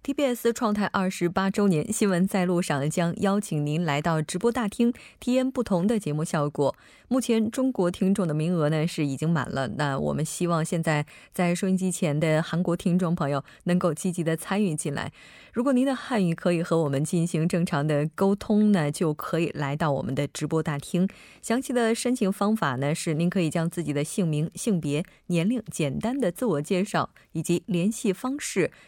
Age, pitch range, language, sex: 20-39, 160-205 Hz, Korean, female